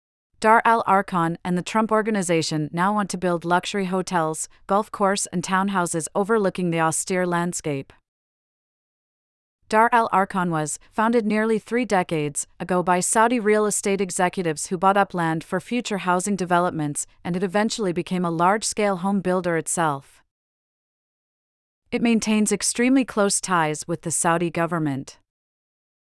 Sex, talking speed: female, 140 wpm